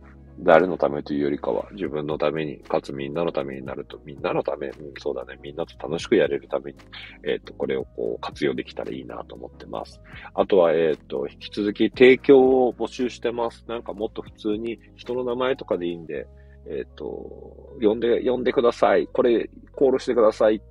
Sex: male